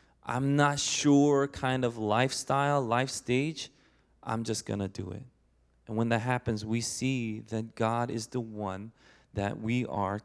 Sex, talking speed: male, 160 wpm